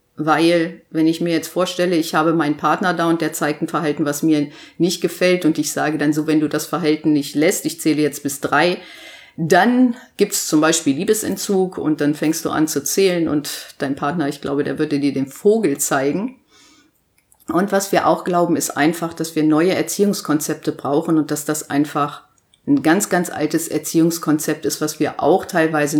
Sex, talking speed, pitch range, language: female, 200 wpm, 150-175 Hz, German